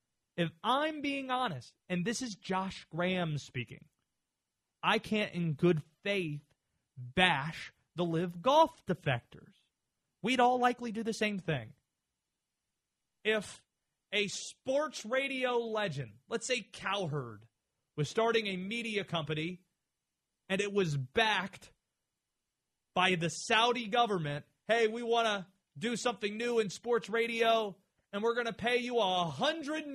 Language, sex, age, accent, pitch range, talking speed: English, male, 30-49, American, 155-235 Hz, 130 wpm